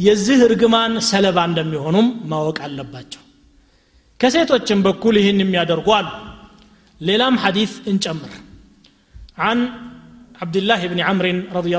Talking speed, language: 105 wpm, Amharic